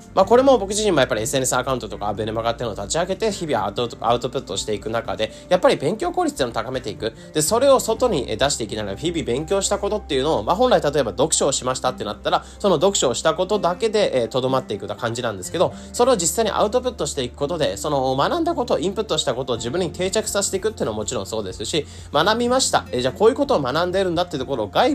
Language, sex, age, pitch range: Japanese, male, 20-39, 120-200 Hz